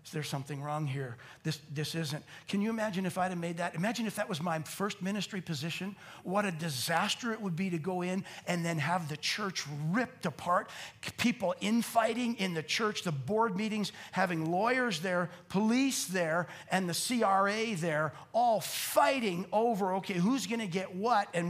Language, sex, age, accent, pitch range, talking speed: English, male, 50-69, American, 160-200 Hz, 180 wpm